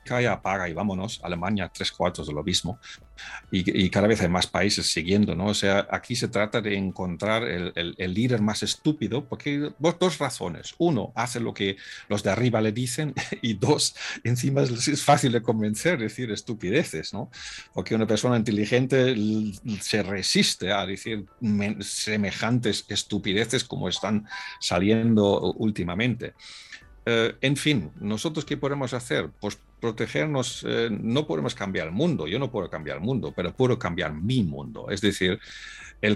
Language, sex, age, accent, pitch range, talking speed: Spanish, male, 50-69, Spanish, 100-130 Hz, 170 wpm